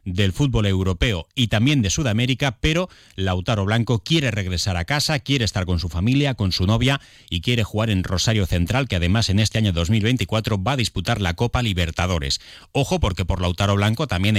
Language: Spanish